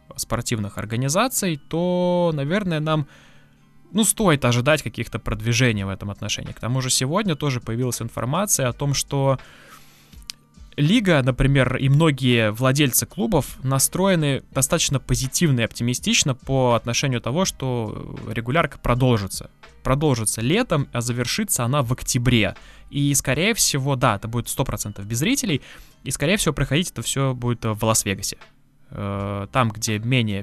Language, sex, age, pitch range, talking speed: Russian, male, 20-39, 115-145 Hz, 135 wpm